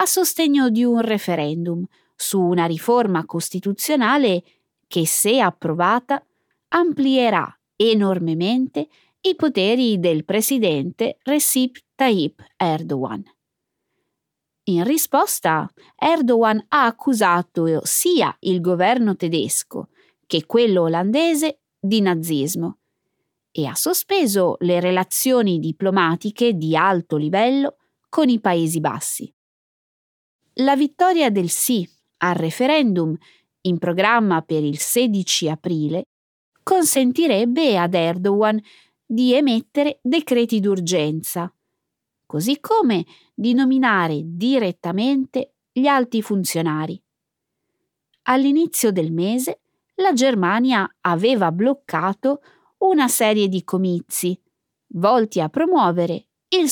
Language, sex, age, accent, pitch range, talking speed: Italian, female, 20-39, native, 175-265 Hz, 95 wpm